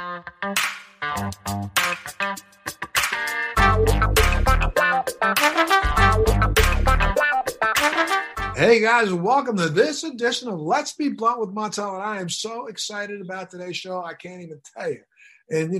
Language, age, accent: English, 50-69, American